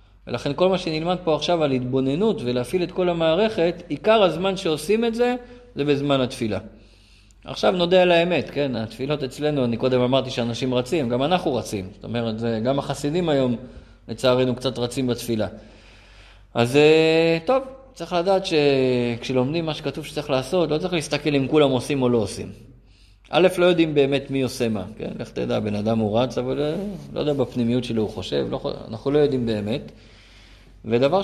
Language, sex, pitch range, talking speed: Hebrew, male, 115-170 Hz, 165 wpm